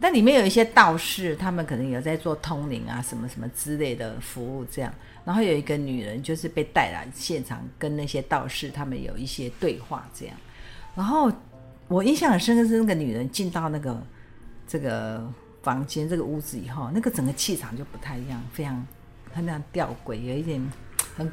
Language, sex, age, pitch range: Chinese, female, 50-69, 125-180 Hz